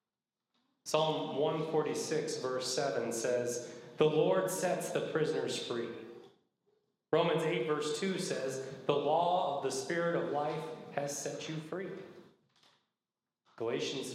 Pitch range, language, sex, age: 130-175 Hz, English, male, 30-49